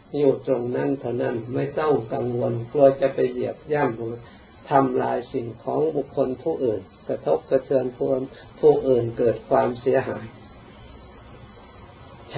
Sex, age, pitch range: male, 50-69, 115-135 Hz